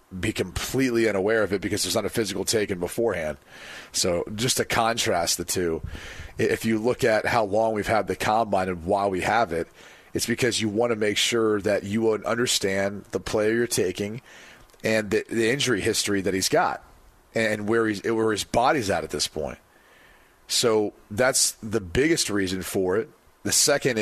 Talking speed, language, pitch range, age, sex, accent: 185 wpm, English, 95-115 Hz, 40-59, male, American